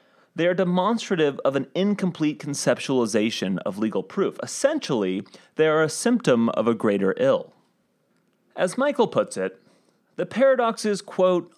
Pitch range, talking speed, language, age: 130-205 Hz, 135 wpm, English, 30-49